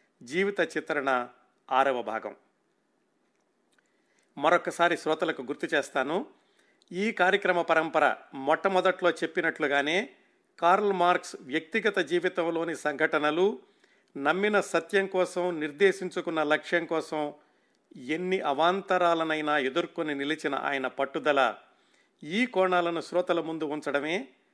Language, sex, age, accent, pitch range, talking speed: Telugu, male, 50-69, native, 150-185 Hz, 85 wpm